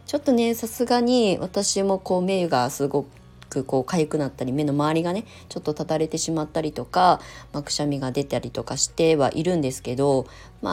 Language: Japanese